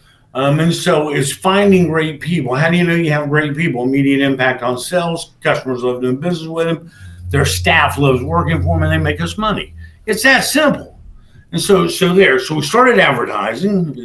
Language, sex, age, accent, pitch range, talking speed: English, male, 50-69, American, 130-185 Hz, 200 wpm